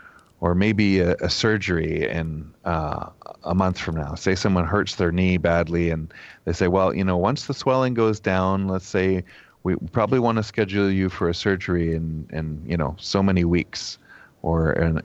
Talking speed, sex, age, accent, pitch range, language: 190 wpm, male, 30-49, American, 85-110 Hz, English